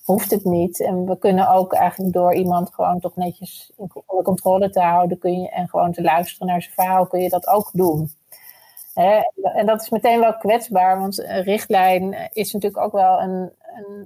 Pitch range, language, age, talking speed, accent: 180-210 Hz, Dutch, 30-49, 200 wpm, Dutch